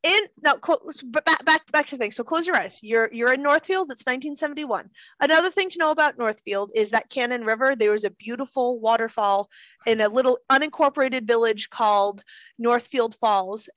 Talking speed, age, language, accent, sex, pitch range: 170 wpm, 30-49, English, American, female, 210-275 Hz